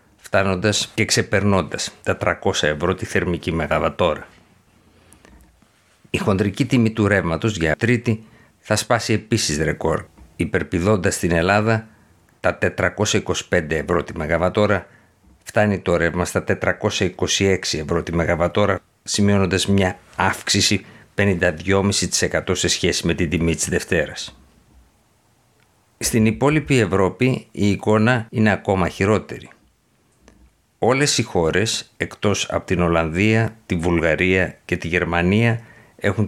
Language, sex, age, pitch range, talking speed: Greek, male, 60-79, 90-110 Hz, 110 wpm